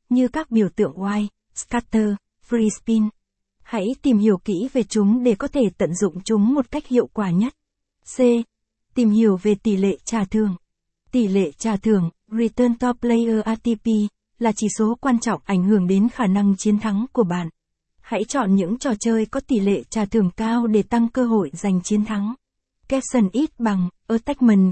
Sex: female